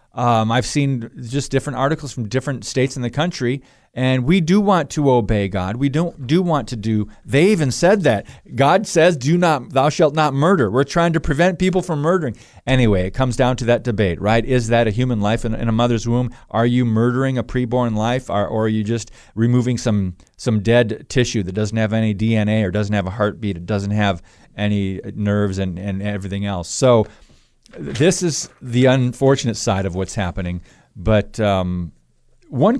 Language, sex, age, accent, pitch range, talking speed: English, male, 40-59, American, 105-150 Hz, 200 wpm